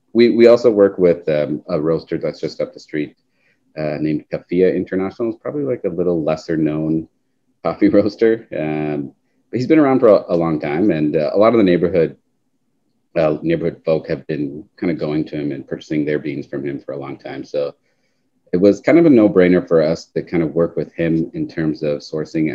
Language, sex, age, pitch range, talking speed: English, male, 30-49, 75-105 Hz, 220 wpm